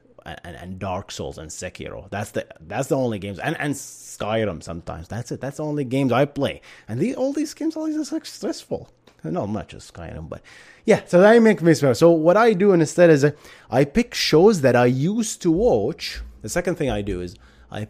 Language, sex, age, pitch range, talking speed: English, male, 30-49, 90-150 Hz, 225 wpm